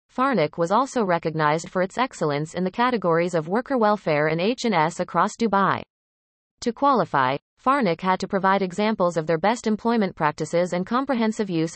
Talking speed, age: 165 wpm, 30-49